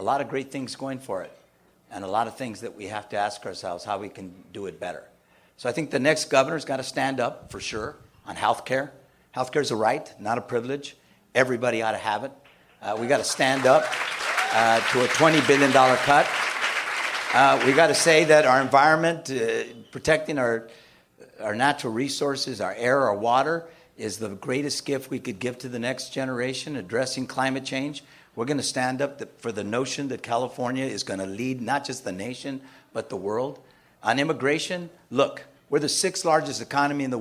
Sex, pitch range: male, 125-145 Hz